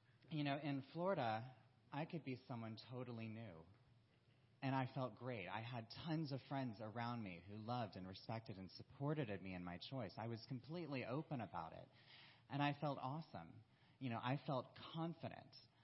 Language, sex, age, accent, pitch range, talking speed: English, male, 30-49, American, 105-135 Hz, 175 wpm